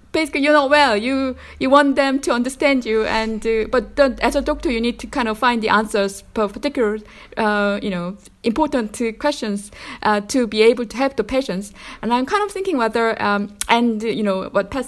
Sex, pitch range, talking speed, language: female, 210-260 Hz, 215 wpm, English